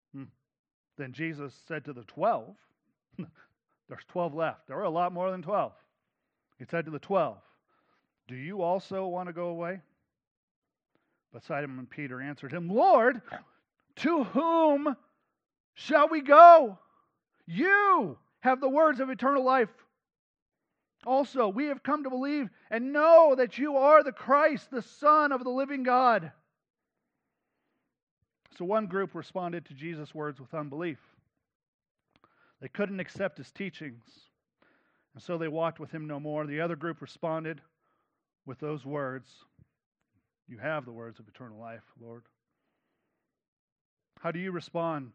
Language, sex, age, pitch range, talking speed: English, male, 40-59, 150-240 Hz, 140 wpm